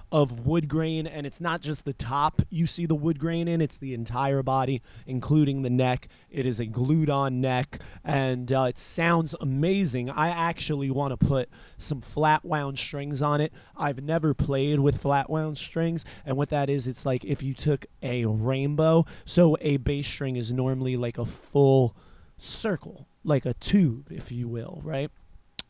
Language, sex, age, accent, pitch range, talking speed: English, male, 20-39, American, 130-160 Hz, 185 wpm